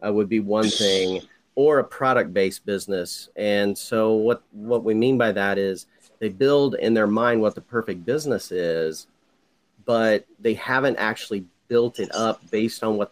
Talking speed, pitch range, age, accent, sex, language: 180 wpm, 100-120 Hz, 40-59, American, male, English